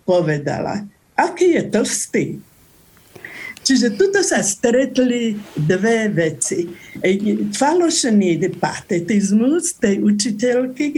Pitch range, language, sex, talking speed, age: 190-250 Hz, Slovak, female, 90 wpm, 60-79